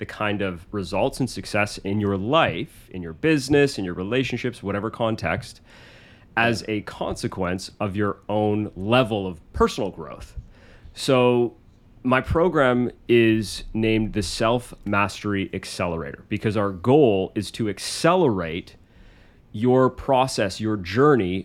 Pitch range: 95-120 Hz